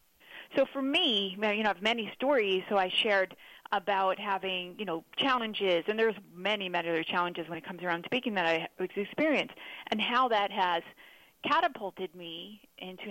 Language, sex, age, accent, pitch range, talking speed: English, female, 30-49, American, 185-240 Hz, 175 wpm